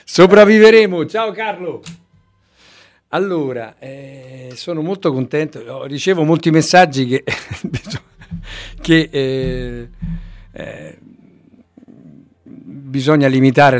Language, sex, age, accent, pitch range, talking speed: Italian, male, 50-69, native, 110-155 Hz, 65 wpm